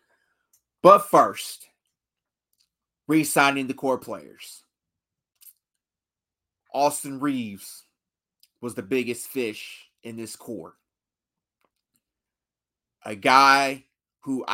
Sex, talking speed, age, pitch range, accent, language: male, 80 wpm, 30-49, 110-135 Hz, American, English